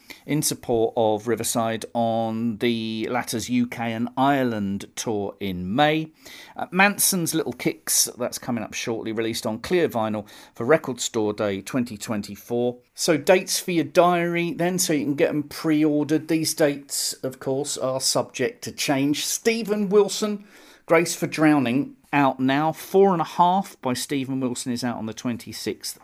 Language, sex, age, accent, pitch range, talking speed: English, male, 40-59, British, 115-170 Hz, 160 wpm